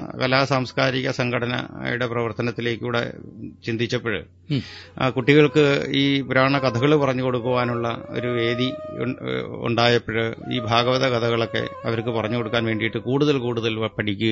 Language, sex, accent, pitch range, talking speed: English, male, Indian, 115-145 Hz, 45 wpm